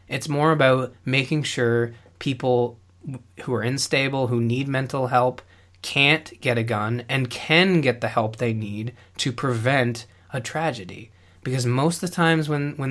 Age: 20-39